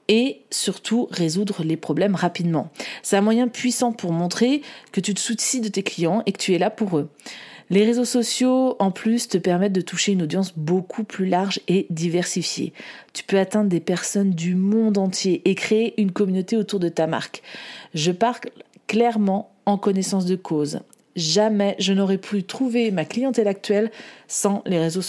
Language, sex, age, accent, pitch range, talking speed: French, female, 40-59, French, 180-220 Hz, 180 wpm